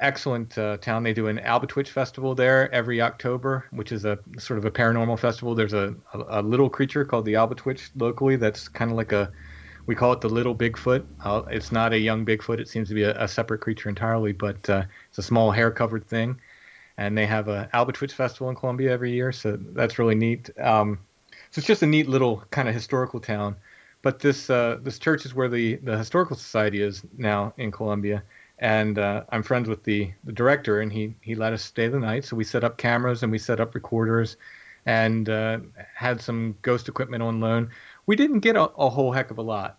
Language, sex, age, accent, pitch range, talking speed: English, male, 40-59, American, 110-130 Hz, 220 wpm